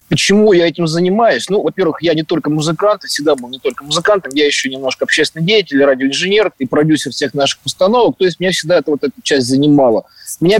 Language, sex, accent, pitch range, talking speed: Russian, male, native, 145-185 Hz, 210 wpm